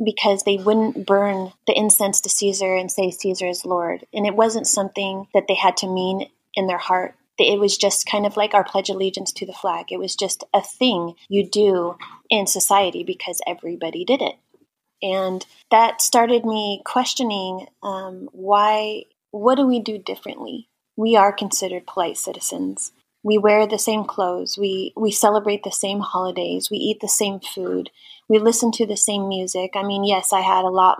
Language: English